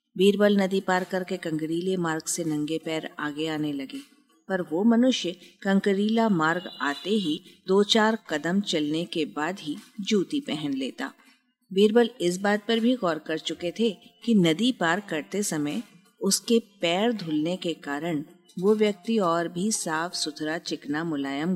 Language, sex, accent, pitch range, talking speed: Hindi, female, native, 165-225 Hz, 155 wpm